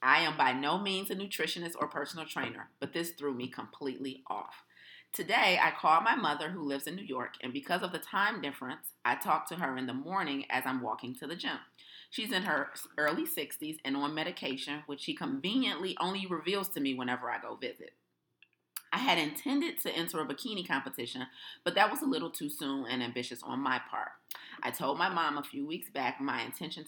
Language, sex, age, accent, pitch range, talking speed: English, female, 30-49, American, 130-170 Hz, 210 wpm